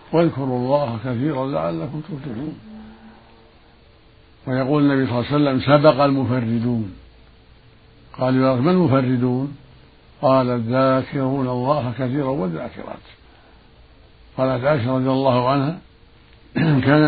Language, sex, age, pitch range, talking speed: Arabic, male, 60-79, 115-135 Hz, 100 wpm